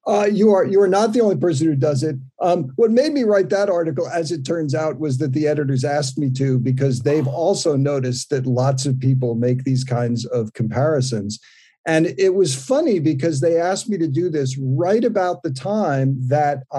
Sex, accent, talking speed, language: male, American, 210 wpm, English